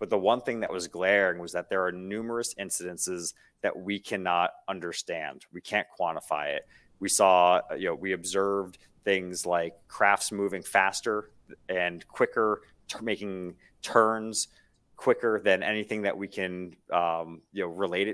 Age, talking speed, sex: 30-49, 150 wpm, male